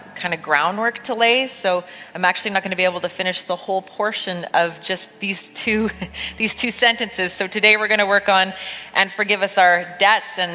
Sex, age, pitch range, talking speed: female, 30-49, 160-200 Hz, 215 wpm